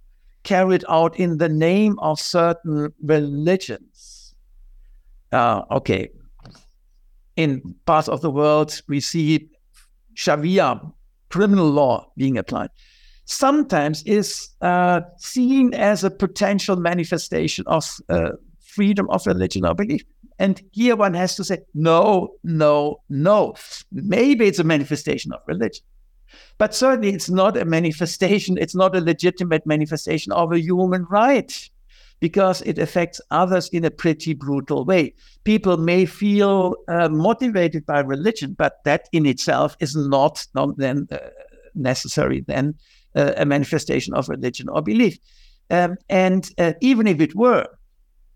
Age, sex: 60-79, male